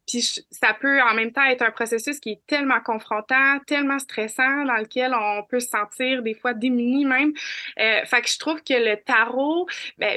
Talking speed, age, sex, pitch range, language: 200 wpm, 20-39, female, 225-270 Hz, French